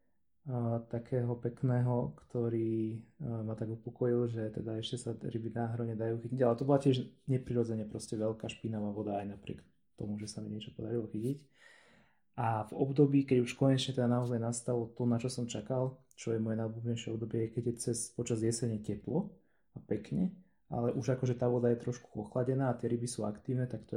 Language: Slovak